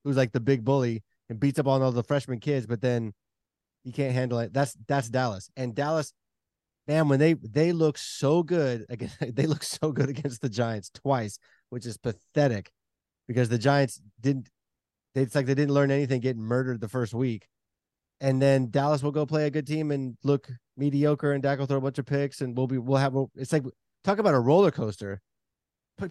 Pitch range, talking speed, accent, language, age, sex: 115-145 Hz, 210 wpm, American, English, 20-39, male